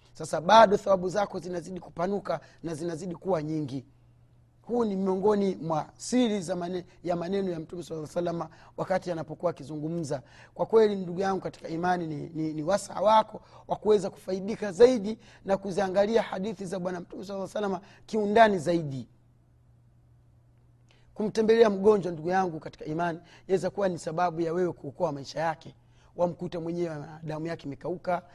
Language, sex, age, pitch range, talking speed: Swahili, male, 30-49, 150-200 Hz, 150 wpm